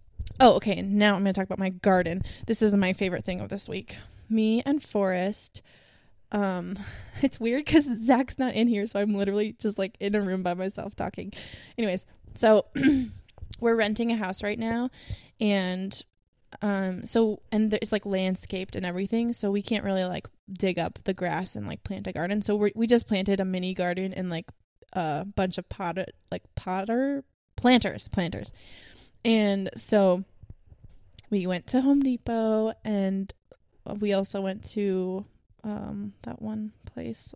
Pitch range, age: 190-225 Hz, 20-39